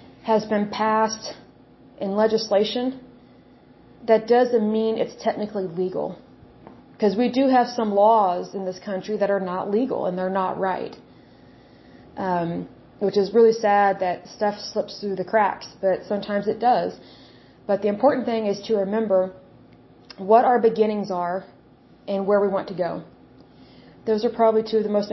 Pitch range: 195-220 Hz